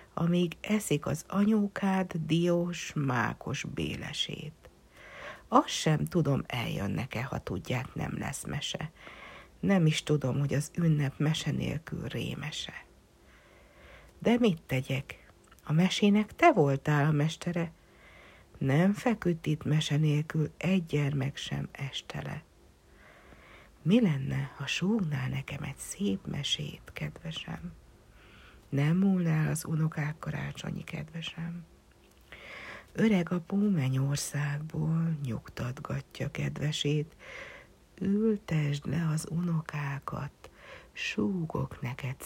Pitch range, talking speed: 135-175 Hz, 100 wpm